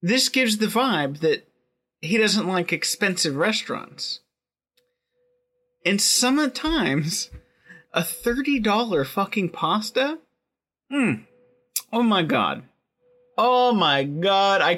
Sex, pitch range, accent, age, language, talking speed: male, 140-205 Hz, American, 30-49, English, 95 wpm